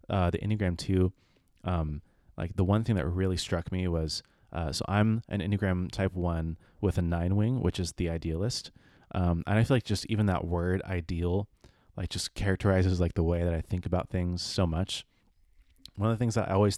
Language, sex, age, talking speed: English, male, 30-49, 210 wpm